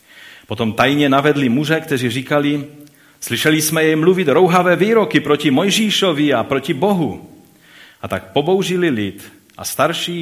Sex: male